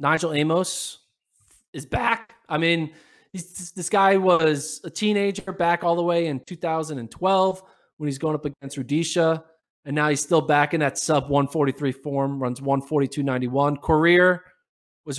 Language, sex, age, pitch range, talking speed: English, male, 20-39, 145-180 Hz, 150 wpm